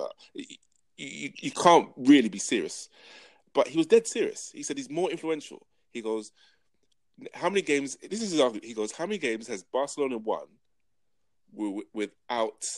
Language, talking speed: English, 165 wpm